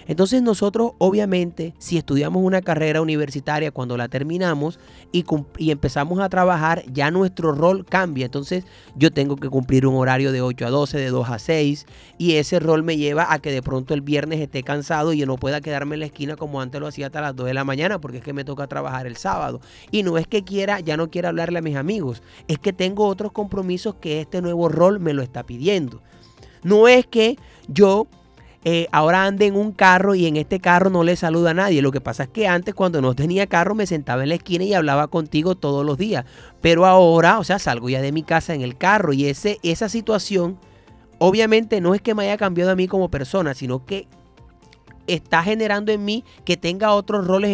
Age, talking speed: 30-49, 220 wpm